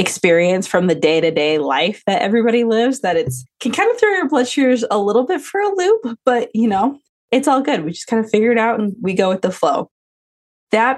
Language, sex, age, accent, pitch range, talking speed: English, female, 20-39, American, 175-235 Hz, 245 wpm